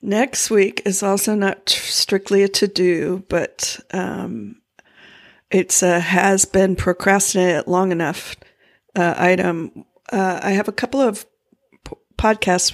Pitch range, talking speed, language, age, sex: 180-205 Hz, 125 wpm, English, 50-69, female